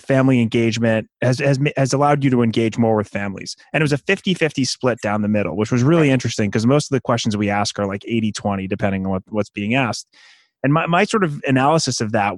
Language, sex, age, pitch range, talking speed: English, male, 30-49, 110-135 Hz, 240 wpm